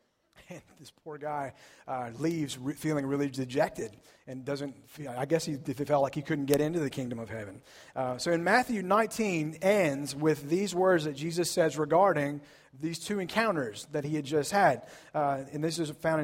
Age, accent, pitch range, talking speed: 30-49, American, 135-170 Hz, 195 wpm